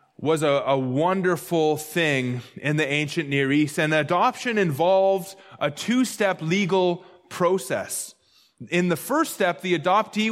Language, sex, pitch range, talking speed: English, male, 155-195 Hz, 135 wpm